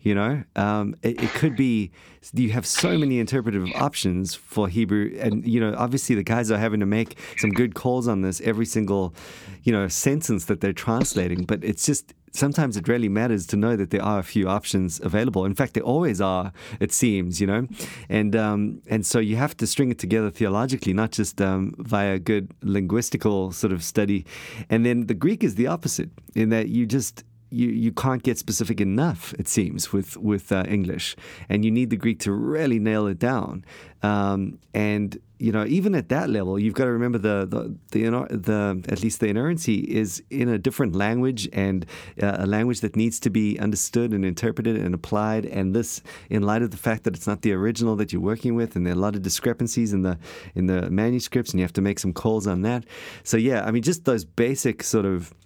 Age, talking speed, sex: 30-49, 215 wpm, male